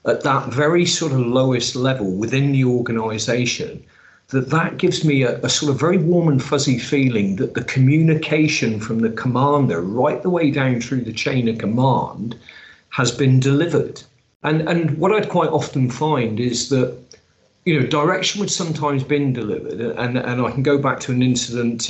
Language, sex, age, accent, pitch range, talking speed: English, male, 40-59, British, 115-145 Hz, 180 wpm